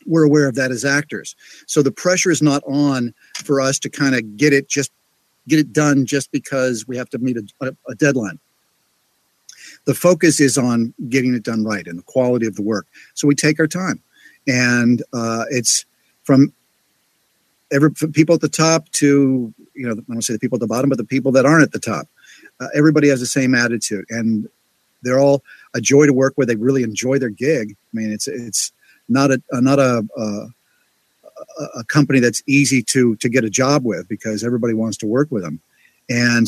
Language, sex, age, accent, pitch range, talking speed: English, male, 50-69, American, 110-140 Hz, 205 wpm